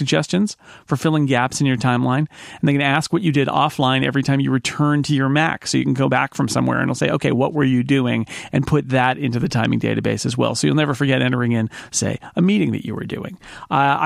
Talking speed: 255 wpm